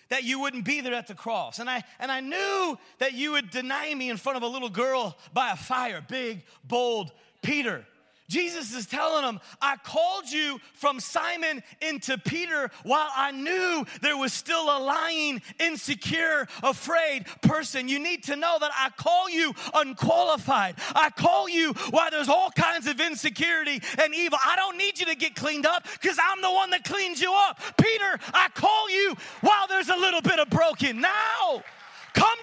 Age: 30-49